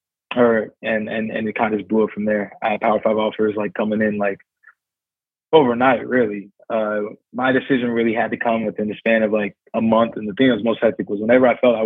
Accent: American